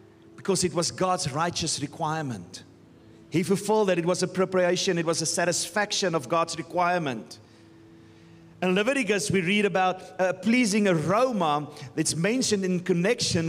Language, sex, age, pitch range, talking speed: English, male, 40-59, 135-195 Hz, 140 wpm